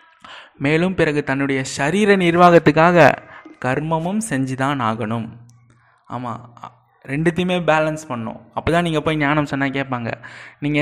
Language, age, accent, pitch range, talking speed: Tamil, 20-39, native, 130-165 Hz, 110 wpm